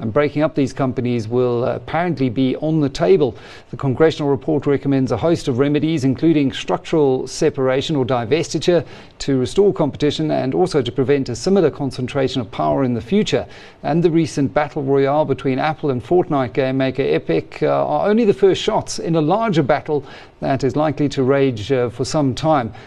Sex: male